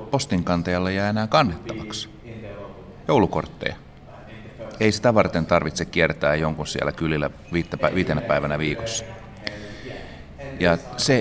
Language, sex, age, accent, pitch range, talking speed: Finnish, male, 30-49, native, 75-90 Hz, 90 wpm